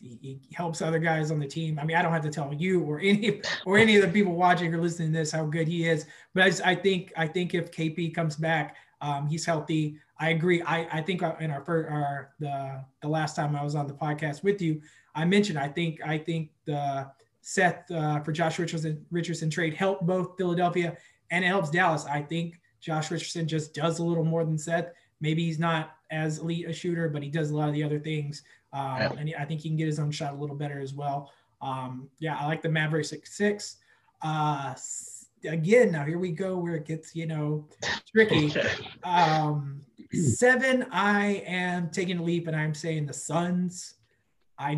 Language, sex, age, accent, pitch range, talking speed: English, male, 20-39, American, 150-170 Hz, 210 wpm